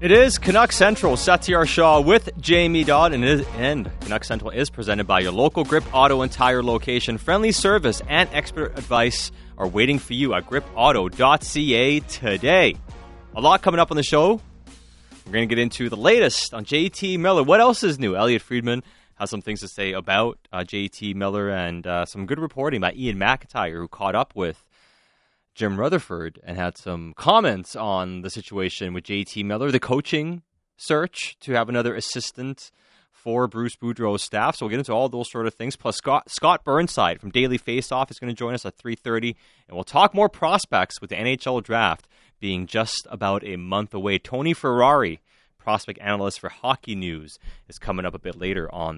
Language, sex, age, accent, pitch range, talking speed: English, male, 30-49, American, 100-145 Hz, 190 wpm